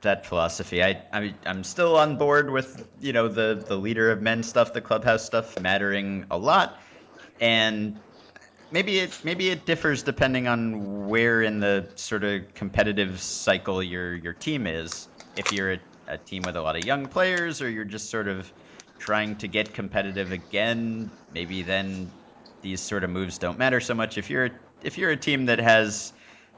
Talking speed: 185 wpm